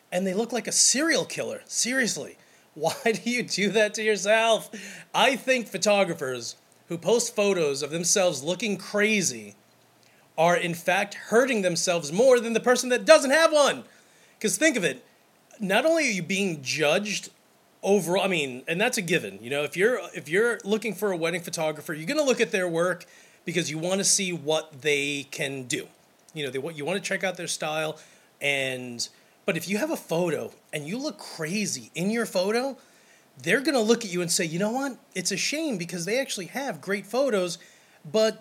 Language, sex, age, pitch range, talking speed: English, male, 30-49, 165-220 Hz, 200 wpm